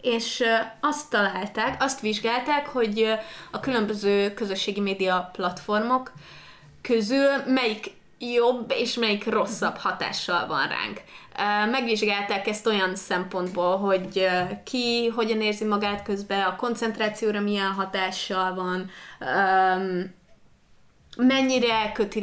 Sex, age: female, 20-39